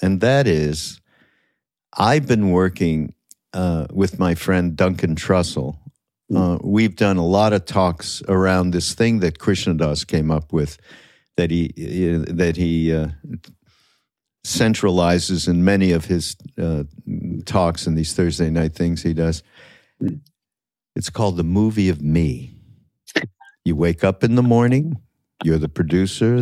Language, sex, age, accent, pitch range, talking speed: English, male, 50-69, American, 85-110 Hz, 140 wpm